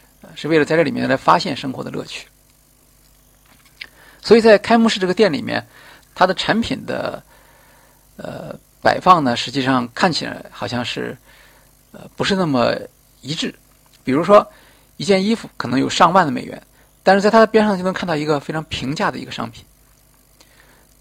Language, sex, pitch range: Chinese, male, 130-185 Hz